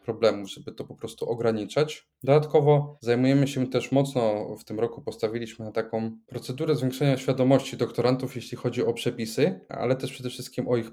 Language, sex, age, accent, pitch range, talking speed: Polish, male, 20-39, native, 115-130 Hz, 170 wpm